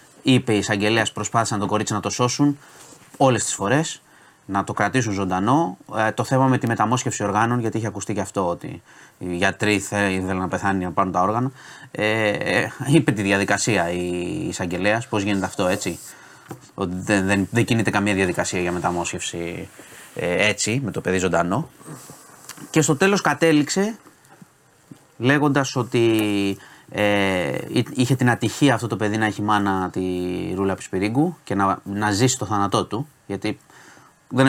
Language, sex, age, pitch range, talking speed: Greek, male, 30-49, 95-130 Hz, 160 wpm